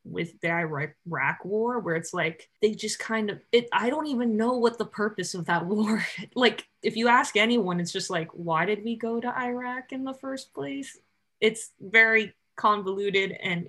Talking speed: 195 wpm